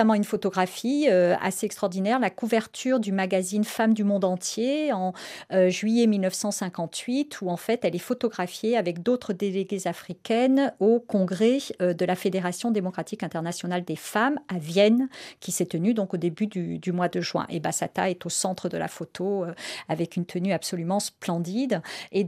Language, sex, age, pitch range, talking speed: French, female, 40-59, 185-230 Hz, 175 wpm